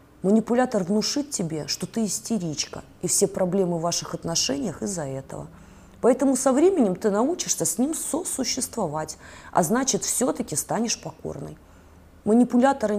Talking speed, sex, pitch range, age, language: 130 wpm, female, 160-225 Hz, 30-49, Russian